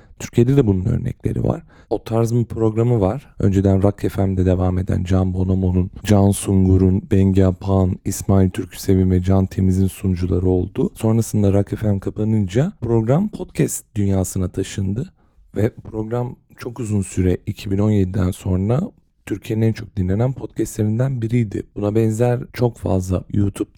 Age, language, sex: 40-59, Turkish, male